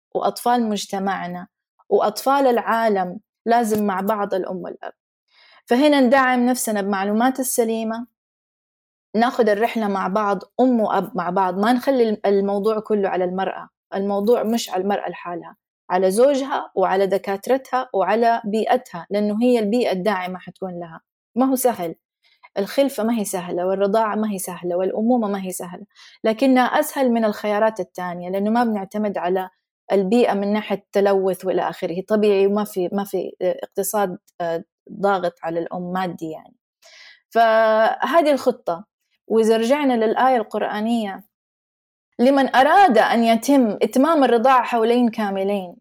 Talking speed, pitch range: 130 wpm, 190-245 Hz